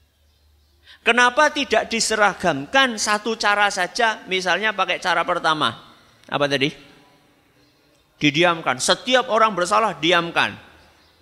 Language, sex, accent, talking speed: Indonesian, male, native, 90 wpm